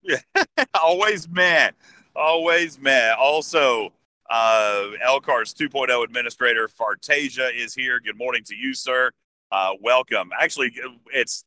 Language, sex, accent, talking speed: English, male, American, 115 wpm